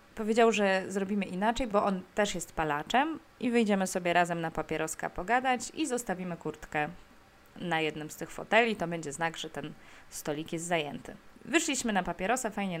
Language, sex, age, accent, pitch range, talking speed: Polish, female, 20-39, native, 170-215 Hz, 170 wpm